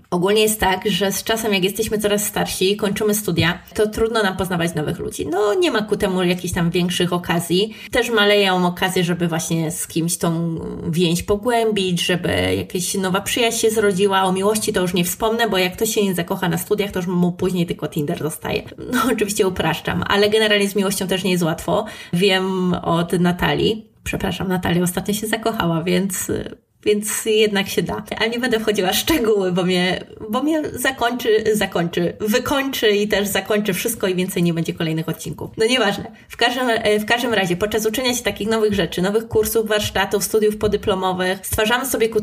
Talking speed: 190 wpm